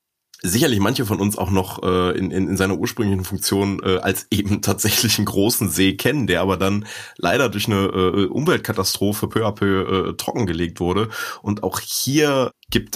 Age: 30-49